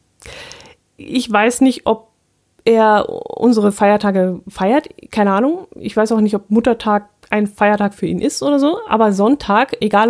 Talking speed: 155 wpm